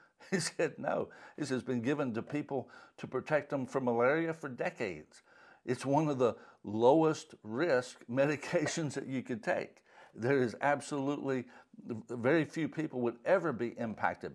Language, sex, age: English, male, 60-79